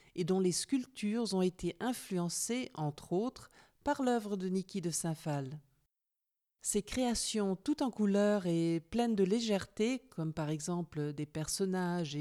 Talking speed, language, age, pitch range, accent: 145 wpm, French, 50-69, 165-235 Hz, French